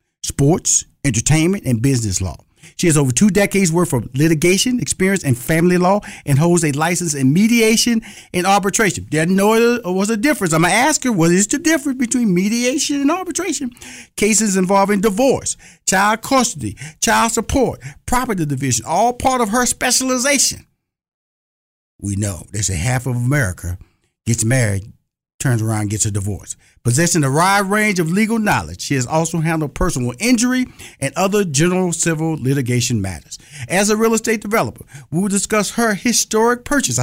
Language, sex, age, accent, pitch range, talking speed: English, male, 50-69, American, 130-210 Hz, 165 wpm